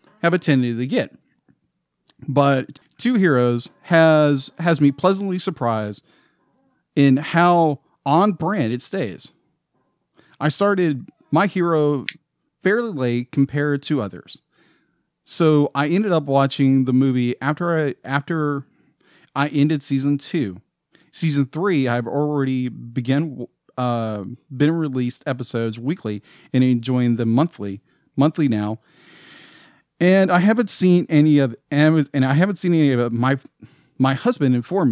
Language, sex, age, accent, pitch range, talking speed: English, male, 40-59, American, 125-155 Hz, 125 wpm